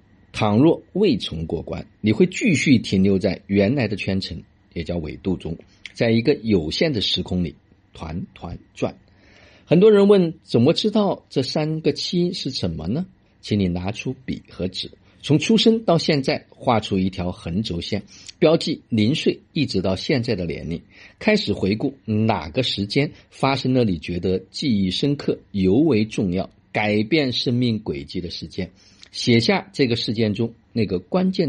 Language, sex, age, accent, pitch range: Chinese, male, 50-69, native, 95-150 Hz